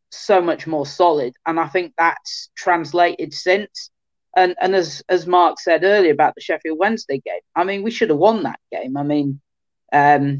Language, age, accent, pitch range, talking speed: English, 30-49, British, 150-185 Hz, 190 wpm